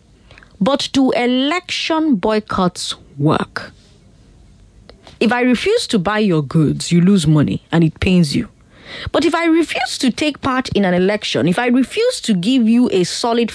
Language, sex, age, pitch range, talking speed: English, female, 20-39, 190-295 Hz, 165 wpm